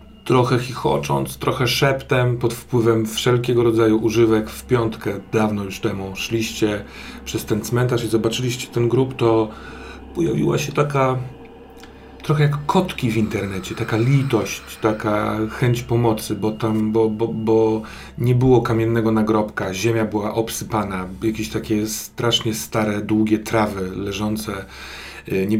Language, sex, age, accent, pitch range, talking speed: Polish, male, 40-59, native, 105-120 Hz, 125 wpm